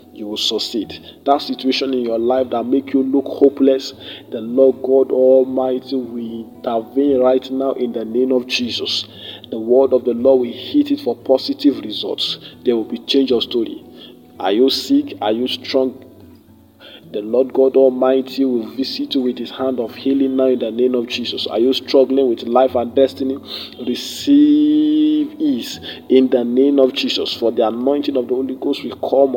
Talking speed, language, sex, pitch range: 185 wpm, English, male, 115-135 Hz